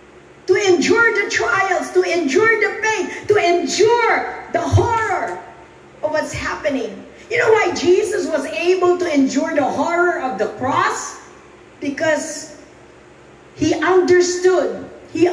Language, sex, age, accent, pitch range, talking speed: English, female, 40-59, Filipino, 325-405 Hz, 125 wpm